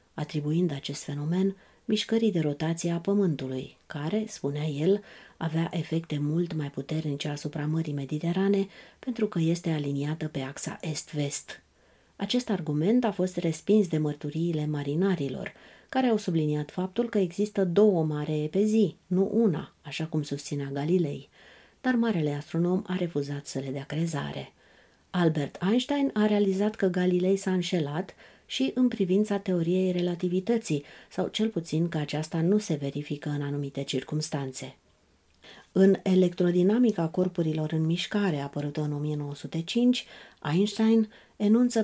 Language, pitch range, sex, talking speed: Romanian, 150-195 Hz, female, 135 wpm